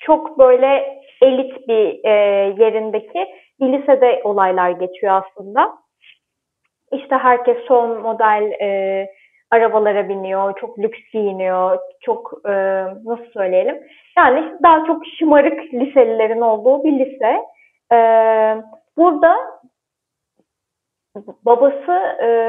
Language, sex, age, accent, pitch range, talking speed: Turkish, female, 30-49, native, 220-275 Hz, 100 wpm